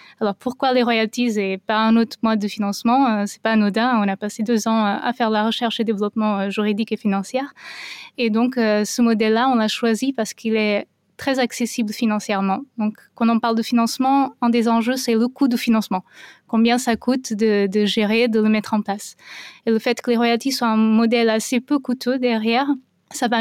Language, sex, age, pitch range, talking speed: French, female, 20-39, 215-245 Hz, 210 wpm